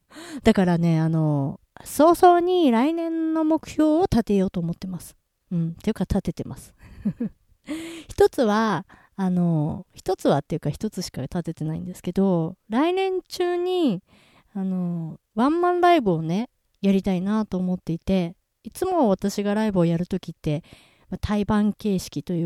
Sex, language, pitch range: female, Japanese, 170-220 Hz